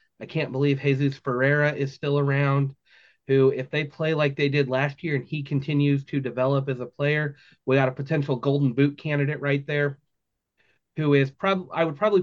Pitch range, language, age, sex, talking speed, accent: 130-150 Hz, English, 30-49, male, 195 wpm, American